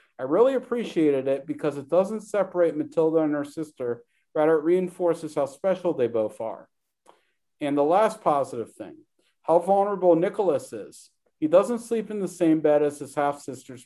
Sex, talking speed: male, 170 wpm